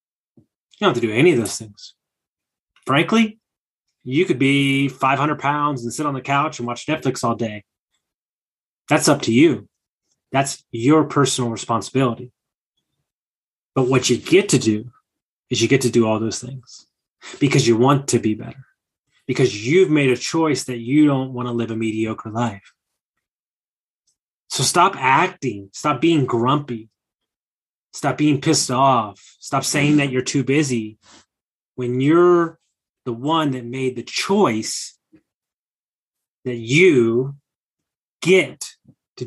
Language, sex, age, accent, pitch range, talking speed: English, male, 20-39, American, 120-150 Hz, 145 wpm